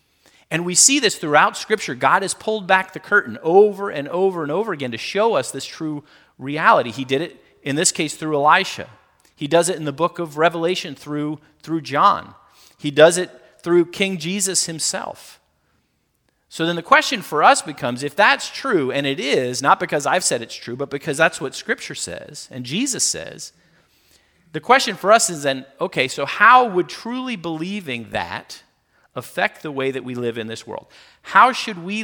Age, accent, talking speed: 40-59, American, 195 wpm